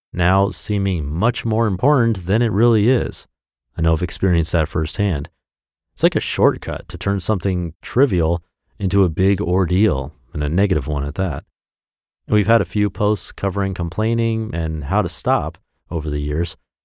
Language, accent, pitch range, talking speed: English, American, 85-110 Hz, 165 wpm